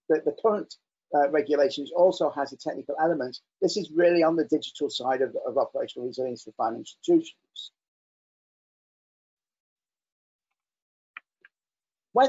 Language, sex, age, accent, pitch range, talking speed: English, male, 40-59, British, 155-185 Hz, 120 wpm